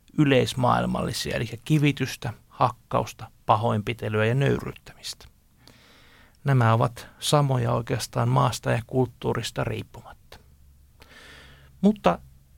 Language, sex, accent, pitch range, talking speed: Finnish, male, native, 100-155 Hz, 75 wpm